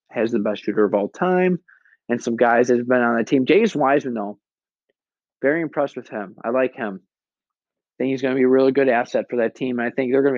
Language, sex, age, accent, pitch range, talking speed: English, male, 20-39, American, 125-180 Hz, 255 wpm